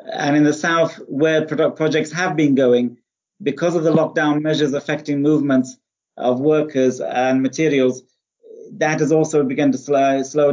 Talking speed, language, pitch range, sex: 150 wpm, English, 135-155 Hz, male